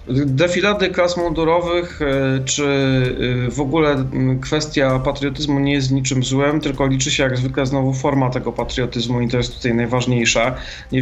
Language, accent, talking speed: Polish, native, 145 wpm